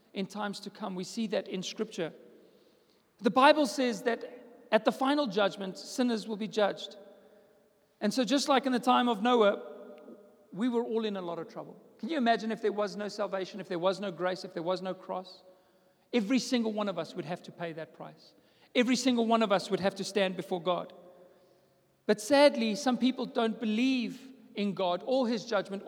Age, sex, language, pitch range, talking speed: 40-59, male, English, 195-250 Hz, 205 wpm